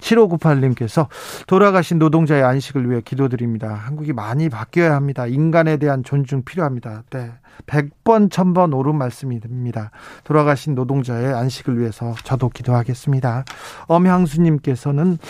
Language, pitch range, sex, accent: Korean, 130-165 Hz, male, native